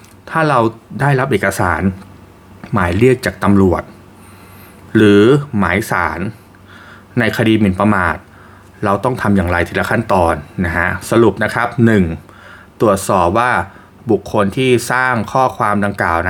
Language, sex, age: Thai, male, 20-39